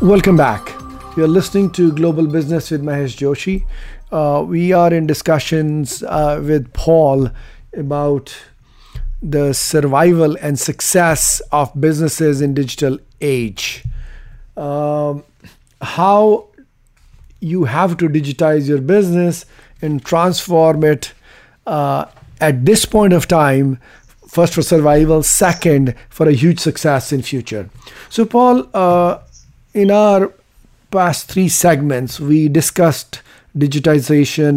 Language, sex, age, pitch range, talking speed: English, male, 50-69, 140-170 Hz, 115 wpm